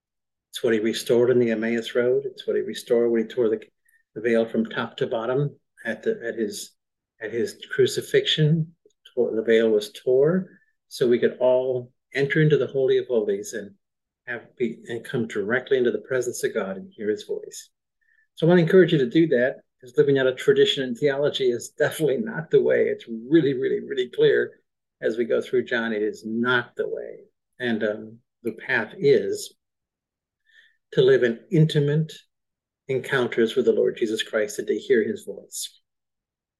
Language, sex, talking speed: English, male, 190 wpm